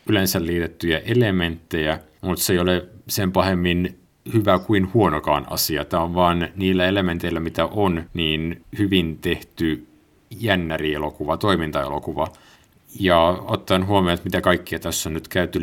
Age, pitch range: 50-69, 80-95 Hz